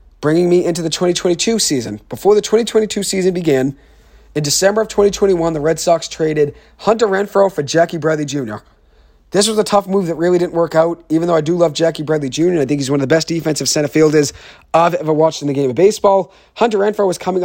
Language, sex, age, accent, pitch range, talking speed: English, male, 40-59, American, 145-175 Hz, 225 wpm